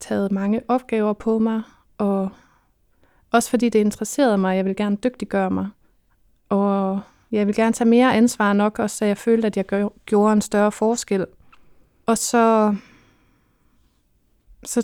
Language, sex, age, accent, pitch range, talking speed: Danish, female, 20-39, native, 215-240 Hz, 155 wpm